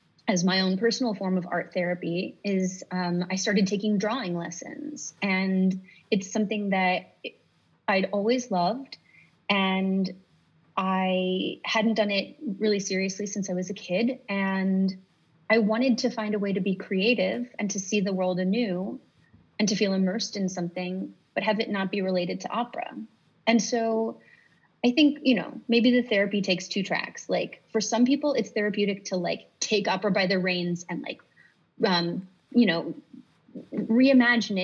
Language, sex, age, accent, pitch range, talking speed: English, female, 30-49, American, 185-225 Hz, 165 wpm